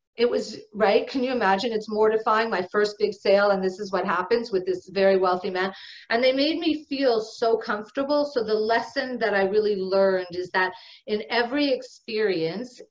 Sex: female